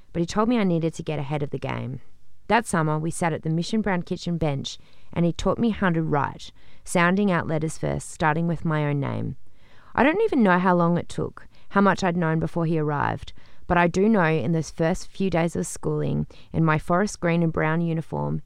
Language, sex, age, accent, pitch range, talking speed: English, female, 30-49, Australian, 140-180 Hz, 230 wpm